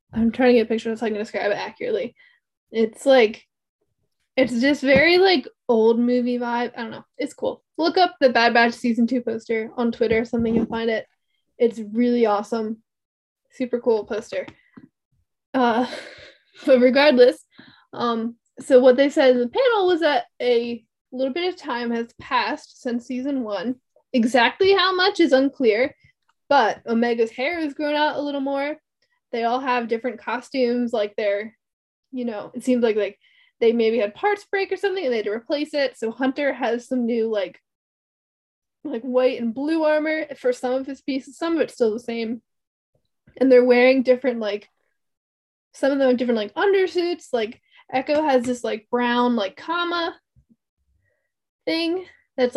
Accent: American